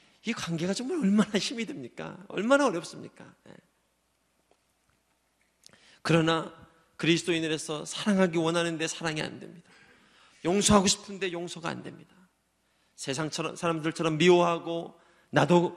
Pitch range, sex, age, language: 135-180 Hz, male, 40-59, Korean